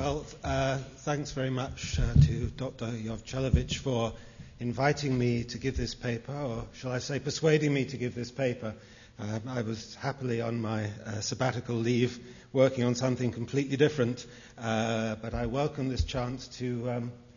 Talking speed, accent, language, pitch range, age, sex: 165 wpm, British, English, 115-140 Hz, 40-59, male